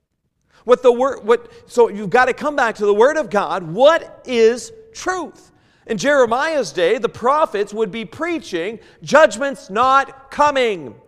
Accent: American